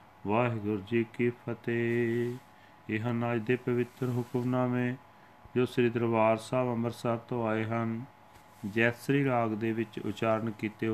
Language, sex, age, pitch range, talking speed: Punjabi, male, 40-59, 105-120 Hz, 130 wpm